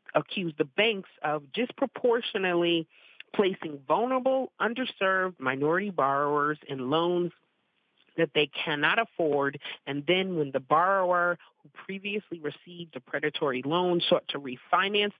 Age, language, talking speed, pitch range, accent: 40-59, English, 120 wpm, 145-180 Hz, American